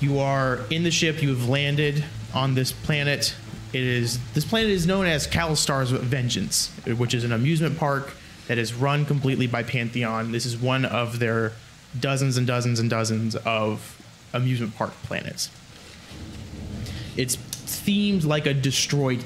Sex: male